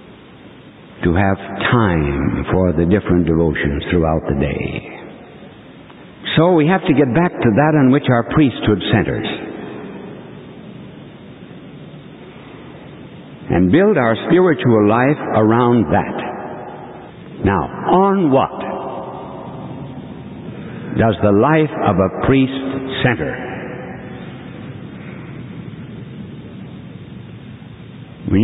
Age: 60-79